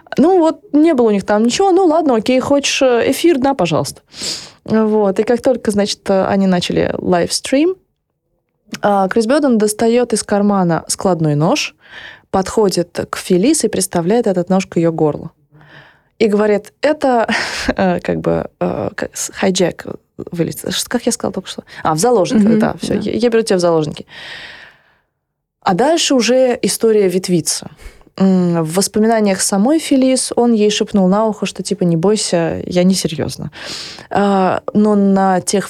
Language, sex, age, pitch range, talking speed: Russian, female, 20-39, 175-225 Hz, 145 wpm